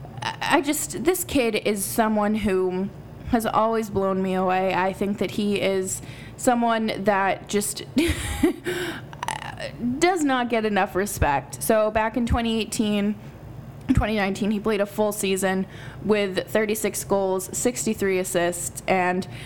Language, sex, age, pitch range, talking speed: English, female, 20-39, 185-240 Hz, 125 wpm